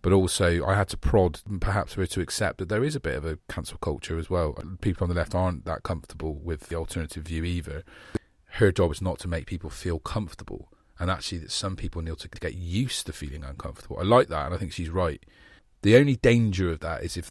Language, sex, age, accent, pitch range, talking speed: English, male, 40-59, British, 80-90 Hz, 245 wpm